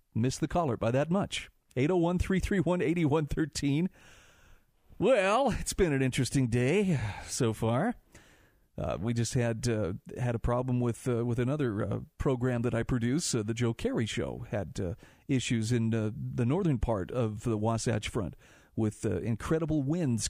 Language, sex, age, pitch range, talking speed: English, male, 40-59, 115-155 Hz, 180 wpm